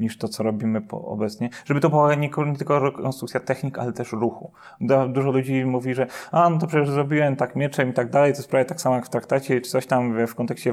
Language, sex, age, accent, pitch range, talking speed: Polish, male, 30-49, native, 115-135 Hz, 235 wpm